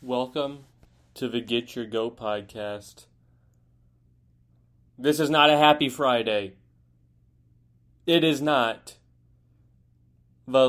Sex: male